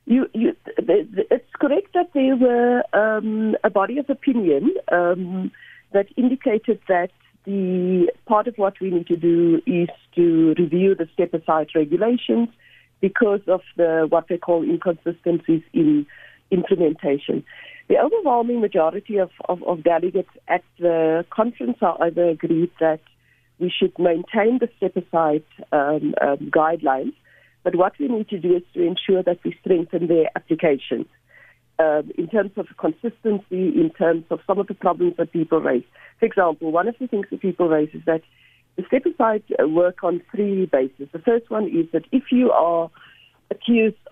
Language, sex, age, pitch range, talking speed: English, female, 60-79, 165-220 Hz, 155 wpm